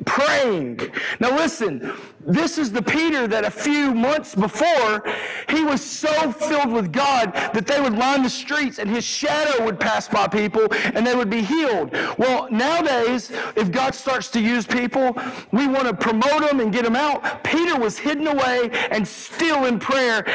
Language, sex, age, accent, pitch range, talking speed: English, male, 40-59, American, 210-265 Hz, 180 wpm